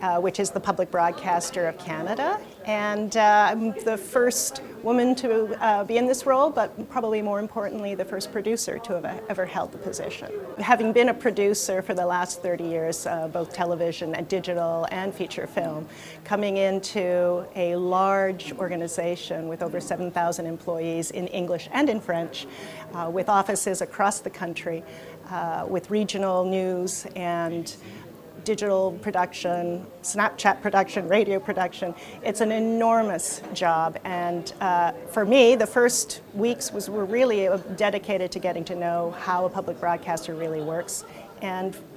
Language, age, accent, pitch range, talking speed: English, 40-59, American, 175-210 Hz, 150 wpm